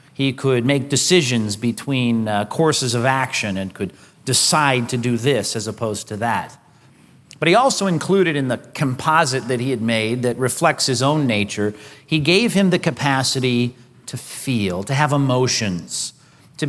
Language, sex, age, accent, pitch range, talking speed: English, male, 40-59, American, 120-155 Hz, 165 wpm